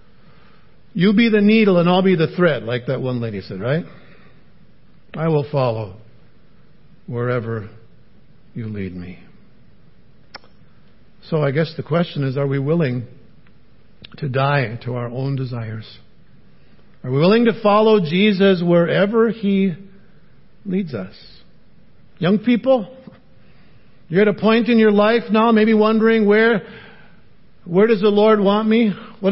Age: 50-69